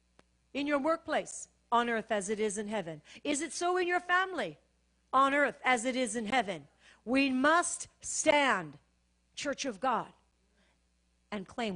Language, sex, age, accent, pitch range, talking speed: English, female, 50-69, American, 220-325 Hz, 160 wpm